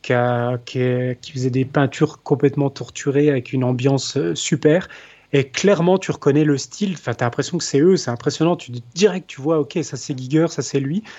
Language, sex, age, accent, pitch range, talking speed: French, male, 30-49, French, 135-170 Hz, 215 wpm